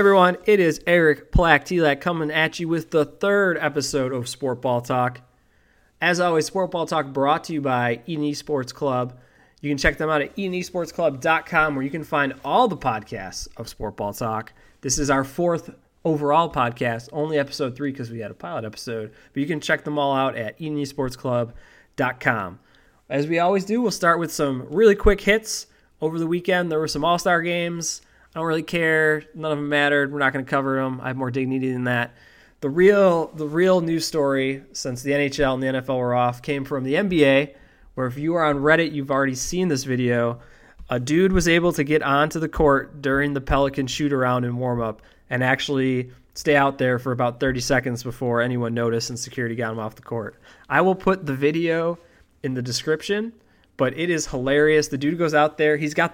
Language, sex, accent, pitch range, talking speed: English, male, American, 130-165 Hz, 200 wpm